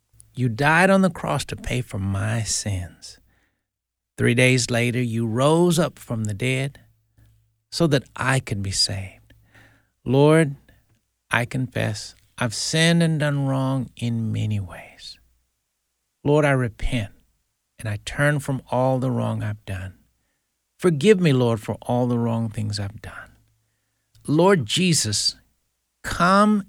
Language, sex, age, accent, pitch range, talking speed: English, male, 60-79, American, 100-140 Hz, 135 wpm